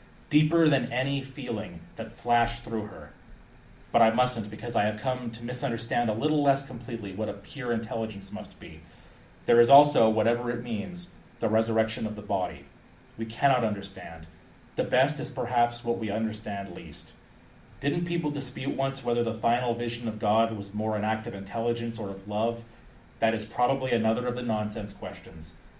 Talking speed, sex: 175 wpm, male